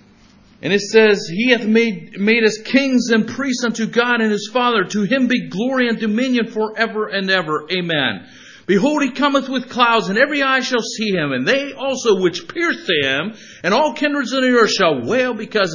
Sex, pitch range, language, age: male, 185-245 Hz, English, 50-69